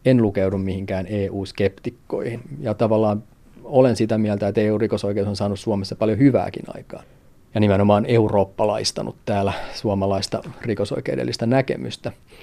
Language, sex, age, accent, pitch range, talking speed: Finnish, male, 30-49, native, 100-120 Hz, 115 wpm